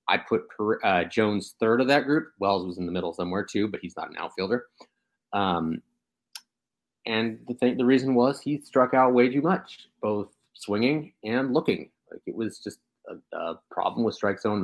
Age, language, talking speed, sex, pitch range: 30-49, English, 195 wpm, male, 100-130 Hz